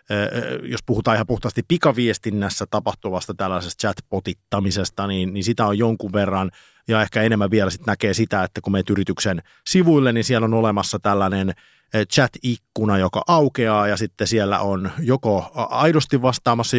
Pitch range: 100-120 Hz